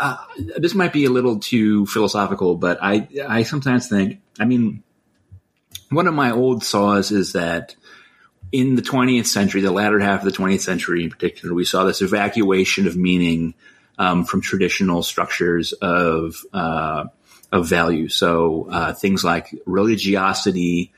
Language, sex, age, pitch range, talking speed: English, male, 30-49, 90-100 Hz, 155 wpm